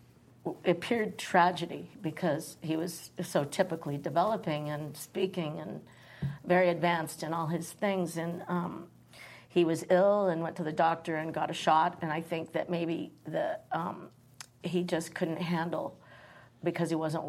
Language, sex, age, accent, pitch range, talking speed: English, female, 50-69, American, 155-175 Hz, 155 wpm